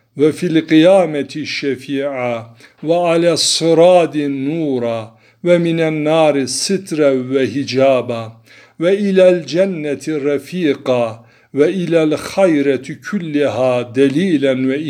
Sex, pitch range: male, 135-165 Hz